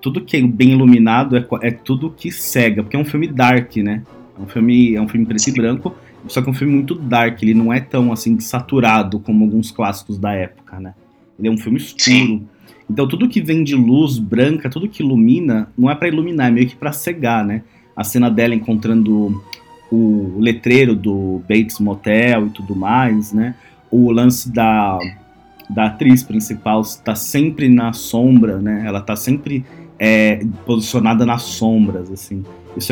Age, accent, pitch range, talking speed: 20-39, Brazilian, 105-125 Hz, 185 wpm